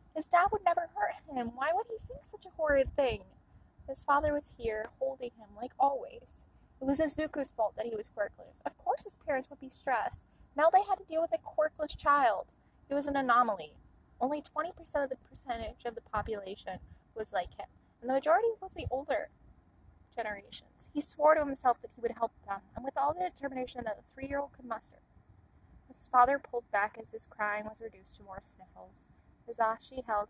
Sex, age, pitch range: female, 10-29, 220-275 Hz